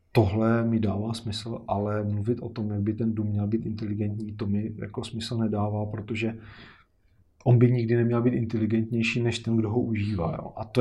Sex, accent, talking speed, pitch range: male, native, 195 wpm, 110-130 Hz